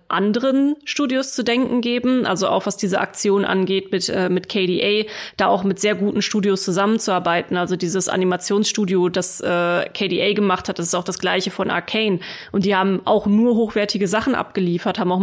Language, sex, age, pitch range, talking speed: German, female, 20-39, 190-215 Hz, 185 wpm